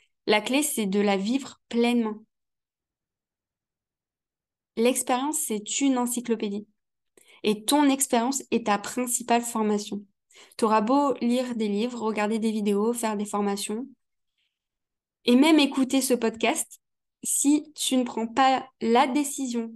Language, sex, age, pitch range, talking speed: French, female, 20-39, 215-260 Hz, 130 wpm